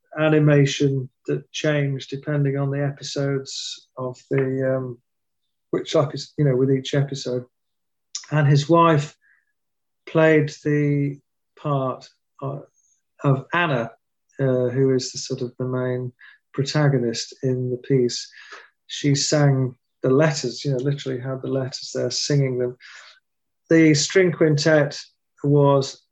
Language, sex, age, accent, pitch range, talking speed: English, male, 40-59, British, 130-155 Hz, 125 wpm